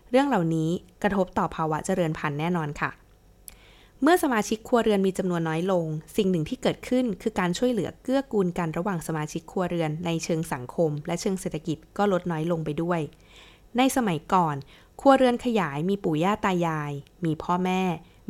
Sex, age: female, 20-39